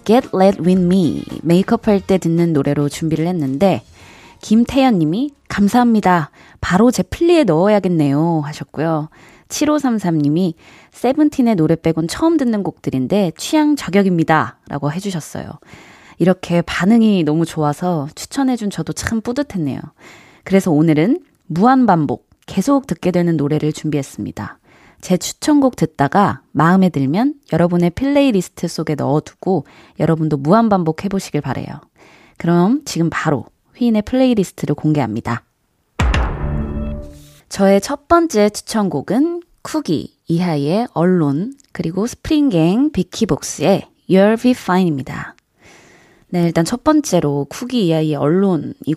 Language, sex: Korean, female